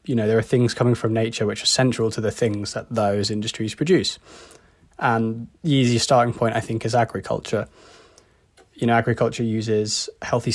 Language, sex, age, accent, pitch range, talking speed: English, male, 20-39, British, 110-125 Hz, 180 wpm